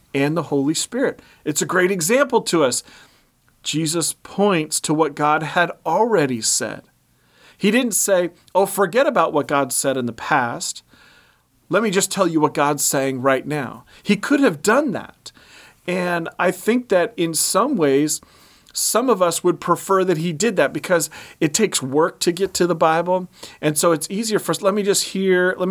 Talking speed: 190 wpm